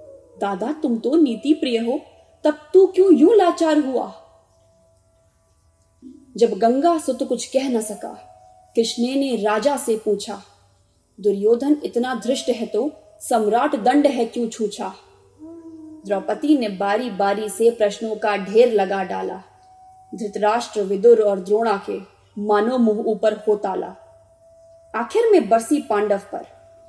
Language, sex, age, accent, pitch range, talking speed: Hindi, female, 20-39, native, 210-300 Hz, 125 wpm